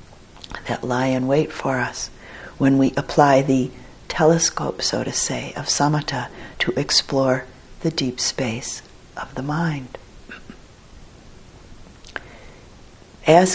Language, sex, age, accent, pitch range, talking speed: English, female, 60-79, American, 135-170 Hz, 110 wpm